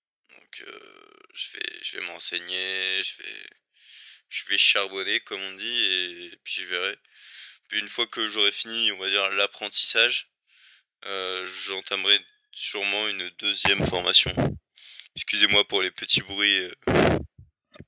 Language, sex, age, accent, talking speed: French, male, 20-39, French, 140 wpm